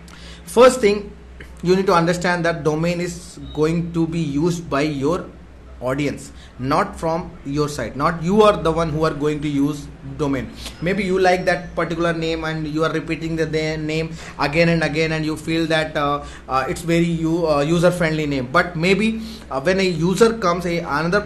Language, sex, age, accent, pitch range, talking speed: English, male, 20-39, Indian, 155-190 Hz, 190 wpm